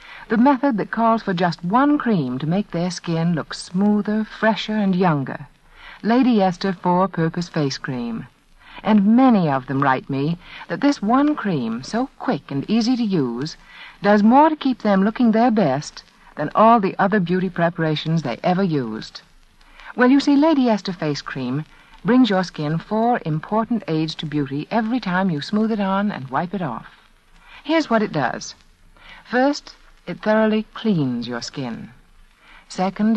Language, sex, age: English, female, 60-79